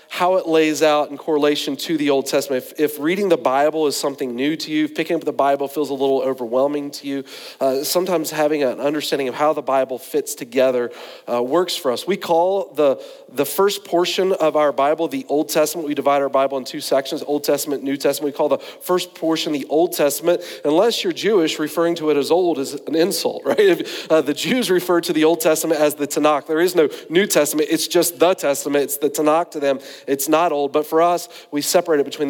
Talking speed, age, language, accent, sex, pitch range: 230 wpm, 40-59, English, American, male, 140-165 Hz